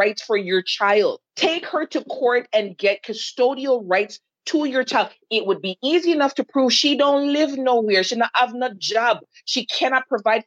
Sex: female